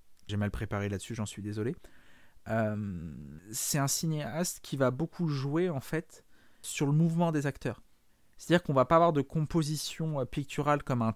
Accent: French